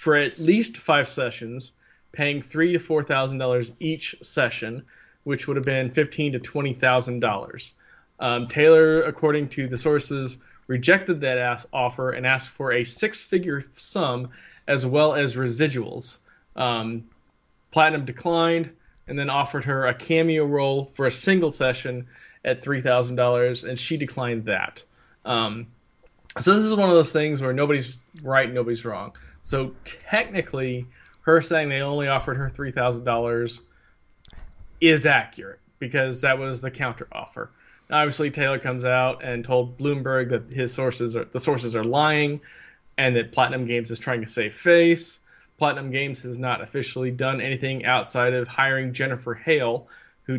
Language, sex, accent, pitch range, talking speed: English, male, American, 120-145 Hz, 160 wpm